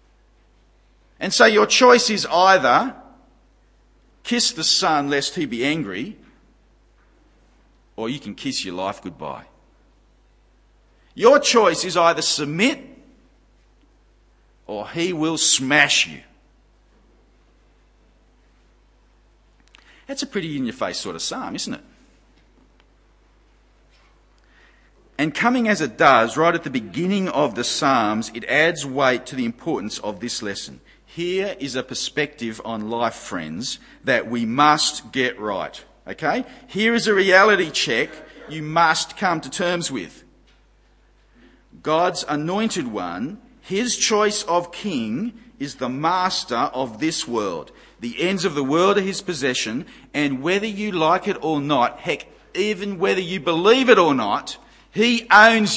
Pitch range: 130-215 Hz